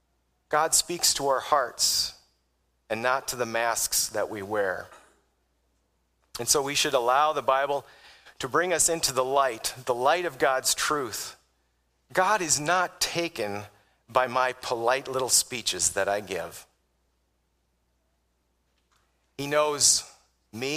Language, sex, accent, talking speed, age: English, male, American, 135 wpm, 40-59